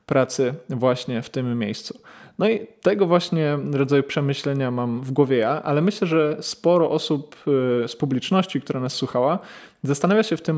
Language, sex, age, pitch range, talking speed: Polish, male, 20-39, 130-155 Hz, 165 wpm